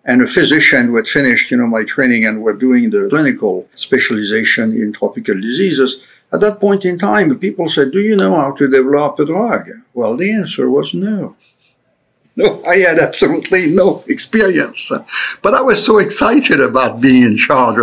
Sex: male